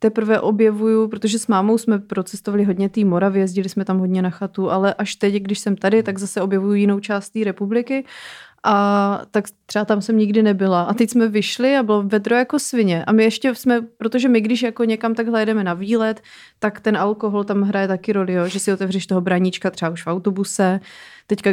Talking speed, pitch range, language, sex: 210 wpm, 200-225 Hz, Czech, female